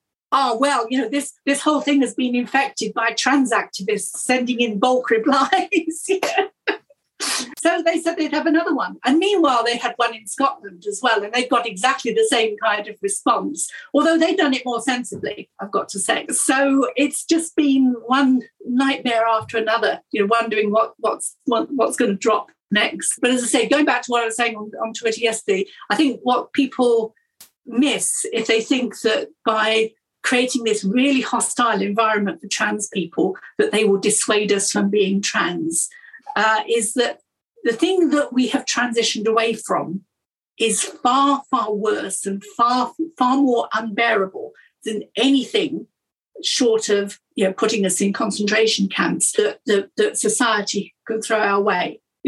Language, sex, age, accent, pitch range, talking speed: English, female, 50-69, British, 215-275 Hz, 175 wpm